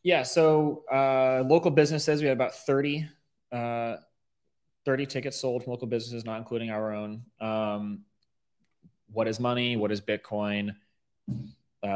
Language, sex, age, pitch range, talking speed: English, male, 20-39, 105-130 Hz, 140 wpm